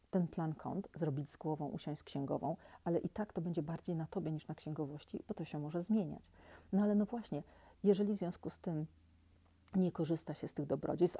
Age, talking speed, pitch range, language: 40-59, 215 wpm, 155-185 Hz, Polish